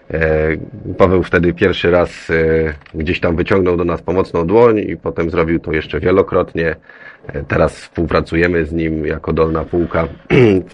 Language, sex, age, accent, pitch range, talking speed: Polish, male, 30-49, native, 80-105 Hz, 140 wpm